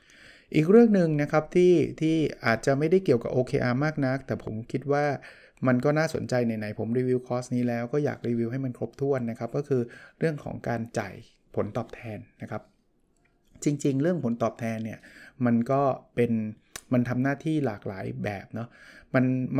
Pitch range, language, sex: 120-150 Hz, Thai, male